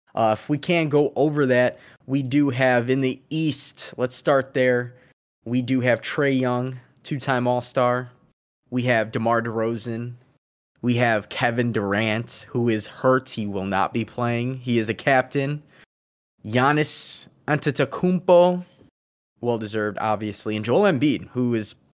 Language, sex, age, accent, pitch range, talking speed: English, male, 20-39, American, 110-140 Hz, 140 wpm